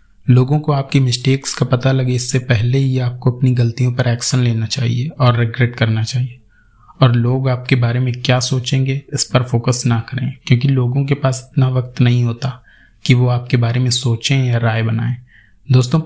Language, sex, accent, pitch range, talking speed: Hindi, male, native, 120-135 Hz, 190 wpm